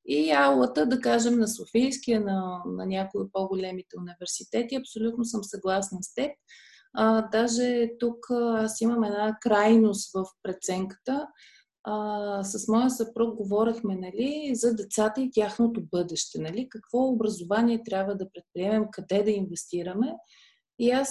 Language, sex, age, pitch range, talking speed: Bulgarian, female, 30-49, 205-245 Hz, 130 wpm